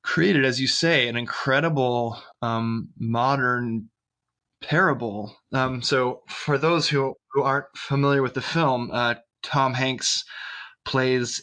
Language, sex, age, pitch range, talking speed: English, male, 20-39, 120-140 Hz, 125 wpm